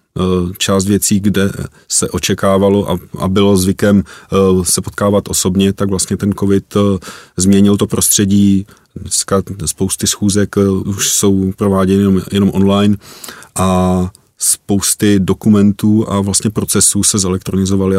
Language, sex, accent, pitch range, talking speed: Czech, male, native, 95-105 Hz, 115 wpm